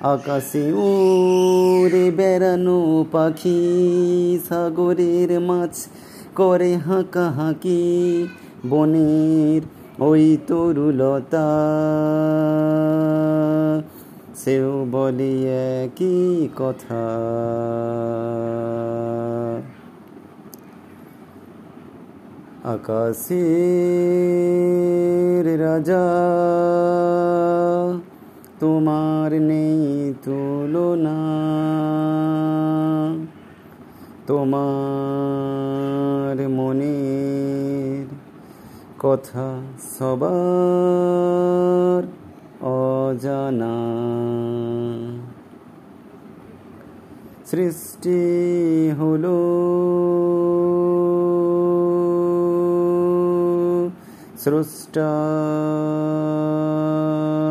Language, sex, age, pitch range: Bengali, male, 30-49, 140-175 Hz